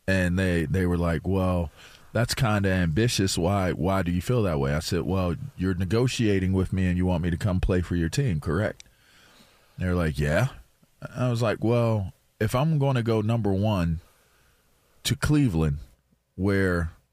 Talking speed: 180 wpm